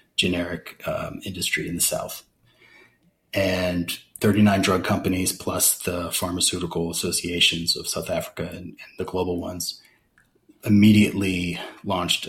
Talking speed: 115 wpm